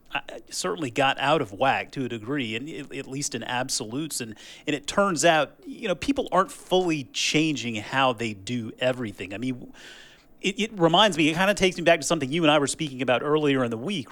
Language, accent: English, American